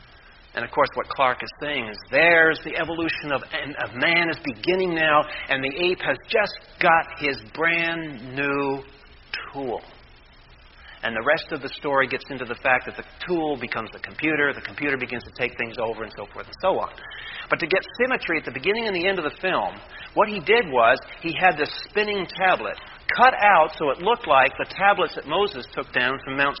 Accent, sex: American, male